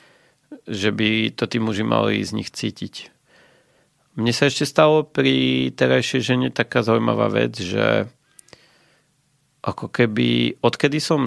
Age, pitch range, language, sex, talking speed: 40-59, 110-145 Hz, Slovak, male, 130 wpm